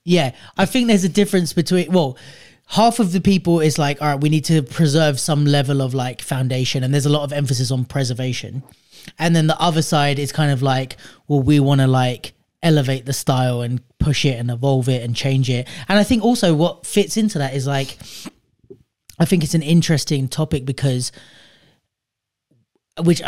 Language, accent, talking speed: English, British, 200 wpm